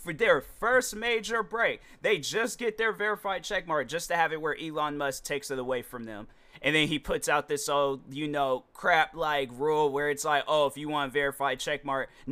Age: 30-49